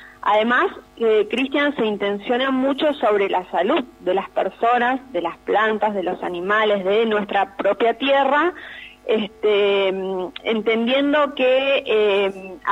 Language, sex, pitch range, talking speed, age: Spanish, female, 210-270 Hz, 120 wpm, 30-49